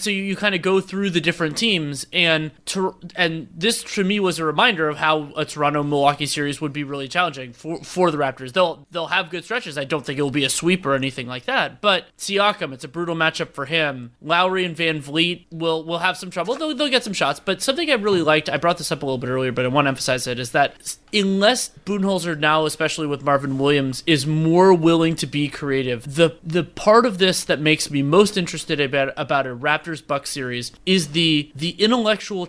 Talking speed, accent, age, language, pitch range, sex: 230 wpm, American, 20-39, English, 145-185 Hz, male